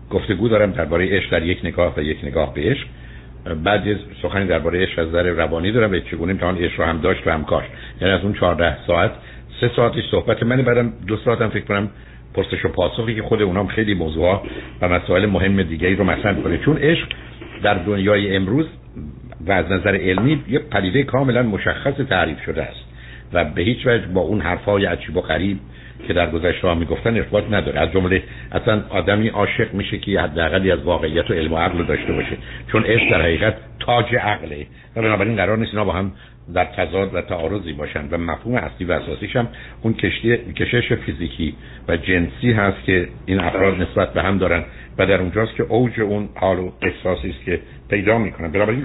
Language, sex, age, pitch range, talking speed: Persian, male, 60-79, 85-110 Hz, 200 wpm